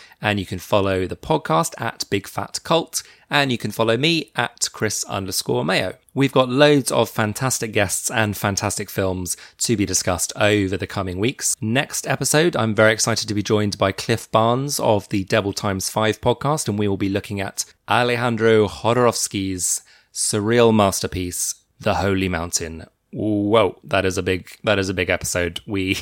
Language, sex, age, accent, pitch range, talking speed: English, male, 20-39, British, 95-120 Hz, 175 wpm